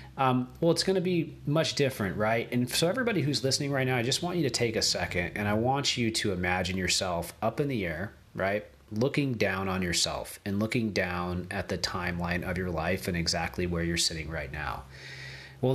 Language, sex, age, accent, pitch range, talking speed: English, male, 30-49, American, 90-120 Hz, 215 wpm